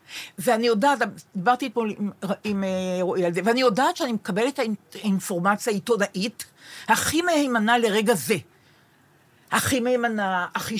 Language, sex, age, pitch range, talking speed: Hebrew, female, 50-69, 195-265 Hz, 120 wpm